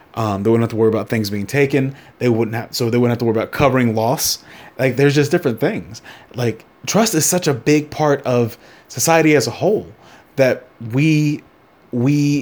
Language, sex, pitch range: English, male, 110-135 Hz